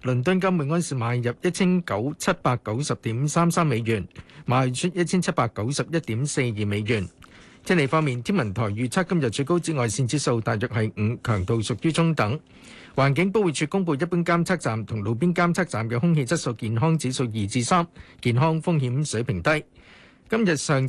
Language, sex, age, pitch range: Chinese, male, 50-69, 120-170 Hz